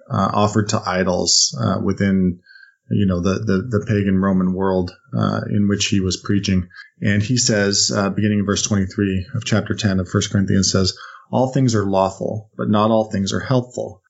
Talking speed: 190 wpm